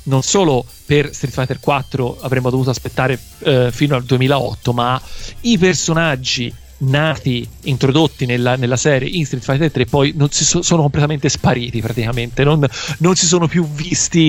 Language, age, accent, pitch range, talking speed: Italian, 40-59, native, 125-155 Hz, 165 wpm